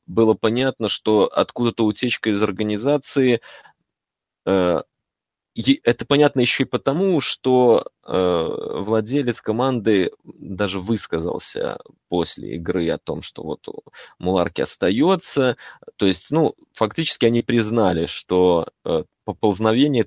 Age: 20-39